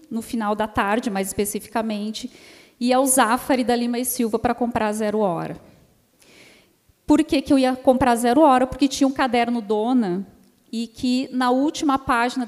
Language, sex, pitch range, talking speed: Portuguese, female, 210-255 Hz, 170 wpm